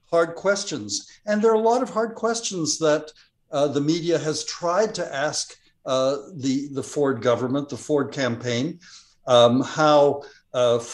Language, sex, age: English, male, 60-79